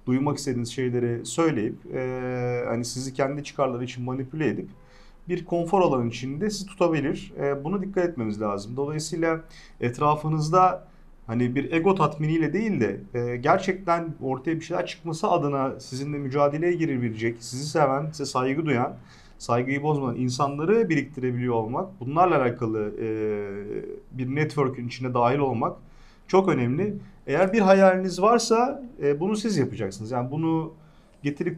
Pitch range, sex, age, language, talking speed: 125-175 Hz, male, 40-59, Turkish, 135 wpm